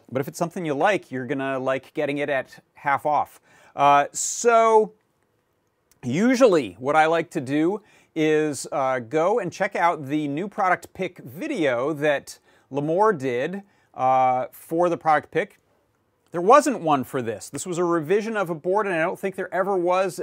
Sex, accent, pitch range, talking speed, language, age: male, American, 135-190 Hz, 180 wpm, English, 40-59